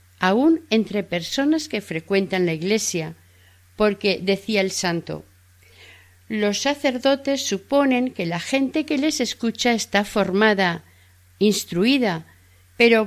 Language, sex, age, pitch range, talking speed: Spanish, female, 50-69, 160-235 Hz, 110 wpm